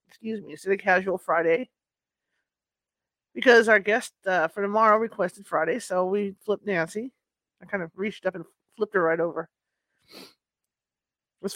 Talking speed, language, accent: 160 wpm, English, American